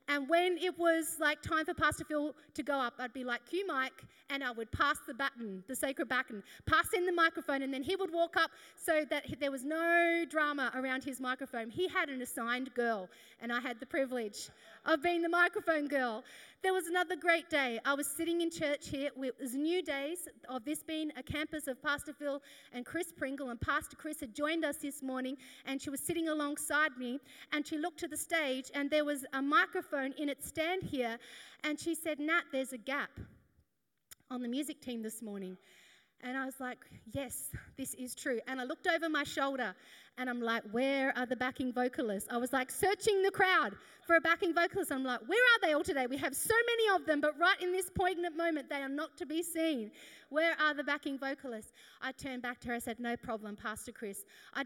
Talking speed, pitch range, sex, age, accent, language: 220 wpm, 255-325 Hz, female, 30-49, Australian, English